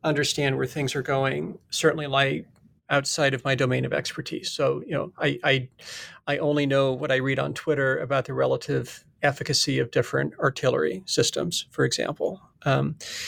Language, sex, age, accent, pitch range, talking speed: English, male, 40-59, American, 130-150 Hz, 165 wpm